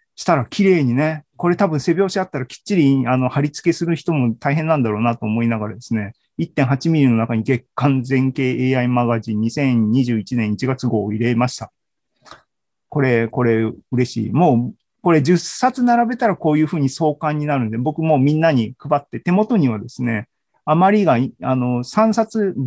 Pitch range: 120-170 Hz